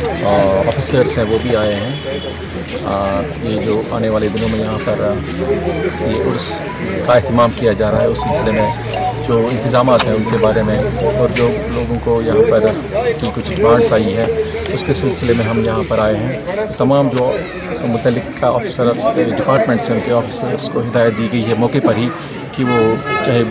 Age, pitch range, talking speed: 40-59, 115-135 Hz, 165 wpm